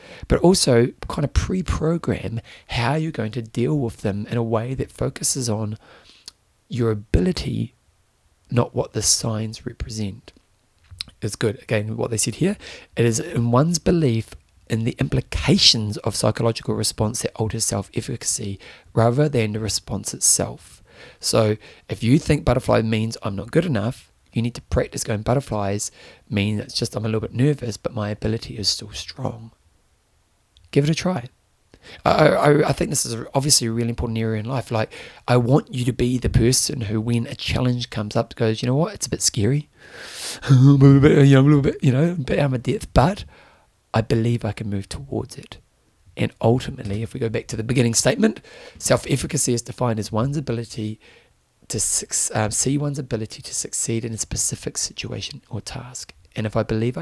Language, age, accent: English, 30-49, British